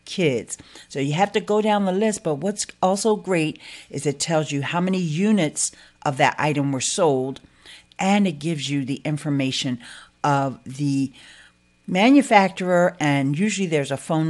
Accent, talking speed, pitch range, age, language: American, 165 wpm, 140-195 Hz, 50-69, English